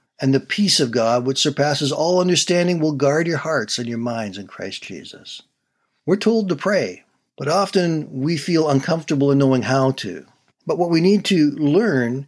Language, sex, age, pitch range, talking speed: English, male, 60-79, 125-165 Hz, 185 wpm